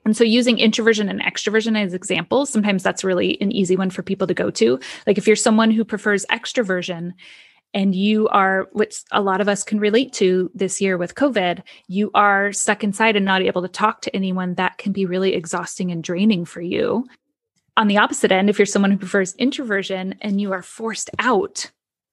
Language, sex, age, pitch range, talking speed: English, female, 20-39, 195-225 Hz, 205 wpm